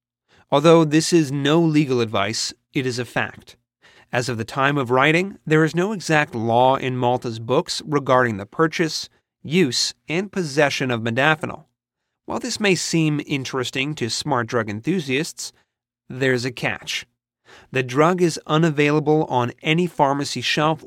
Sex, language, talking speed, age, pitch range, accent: male, English, 150 wpm, 30-49, 120-160 Hz, American